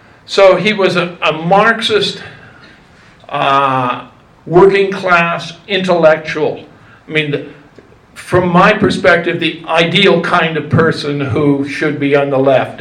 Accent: American